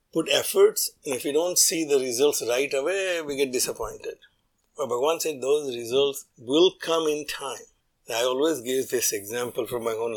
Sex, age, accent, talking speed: male, 50-69, Indian, 185 wpm